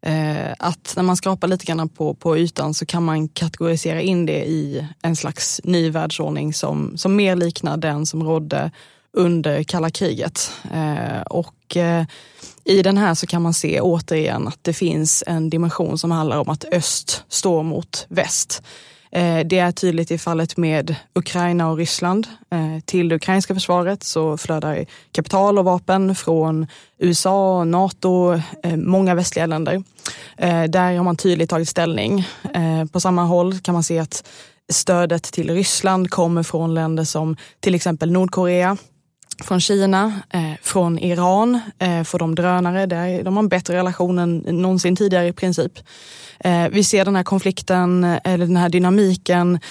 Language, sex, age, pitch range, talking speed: Swedish, female, 20-39, 160-185 Hz, 155 wpm